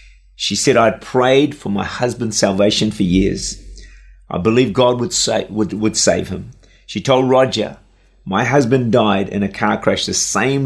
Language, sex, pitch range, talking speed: English, male, 95-140 Hz, 175 wpm